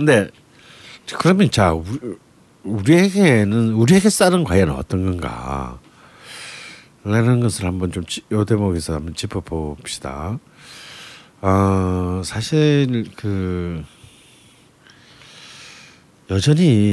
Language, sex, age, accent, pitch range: Korean, male, 50-69, native, 95-140 Hz